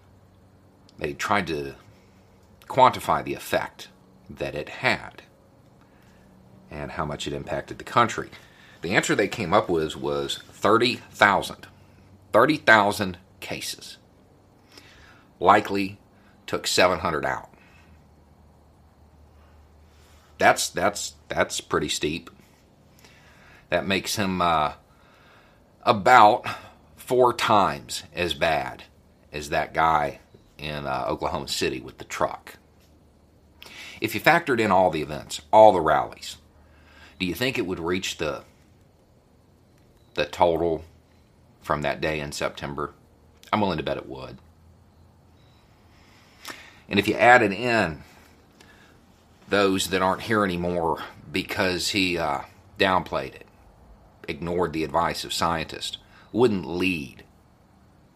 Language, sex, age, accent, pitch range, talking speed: English, male, 40-59, American, 80-100 Hz, 110 wpm